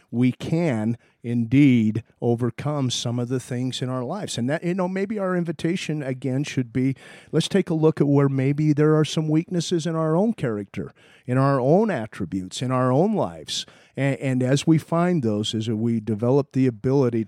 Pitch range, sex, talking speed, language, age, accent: 115-150 Hz, male, 190 wpm, English, 50-69, American